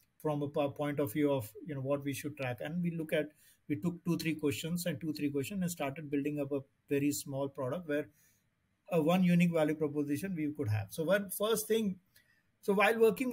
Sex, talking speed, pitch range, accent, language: male, 220 wpm, 140-170 Hz, Indian, English